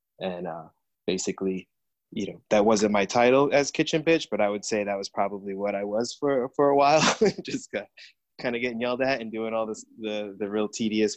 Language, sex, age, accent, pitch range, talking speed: English, male, 20-39, American, 100-110 Hz, 220 wpm